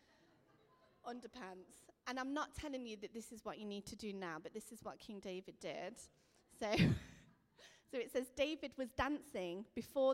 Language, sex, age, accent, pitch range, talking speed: English, female, 30-49, British, 190-245 Hz, 180 wpm